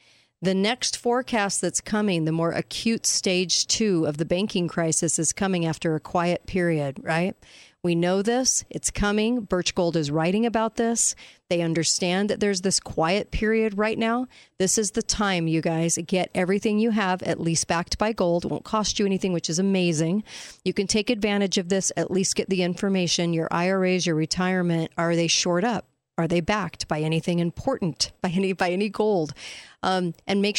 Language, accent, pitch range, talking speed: English, American, 165-200 Hz, 190 wpm